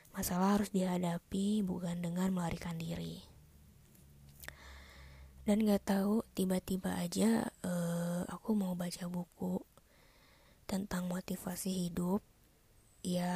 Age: 20-39